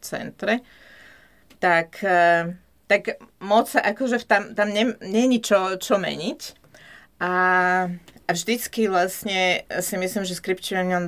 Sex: female